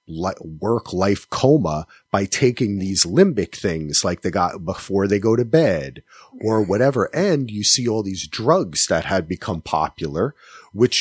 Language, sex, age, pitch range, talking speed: English, male, 30-49, 95-125 Hz, 160 wpm